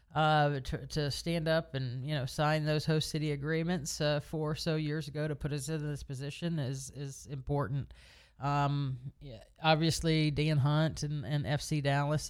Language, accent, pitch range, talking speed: English, American, 130-150 Hz, 180 wpm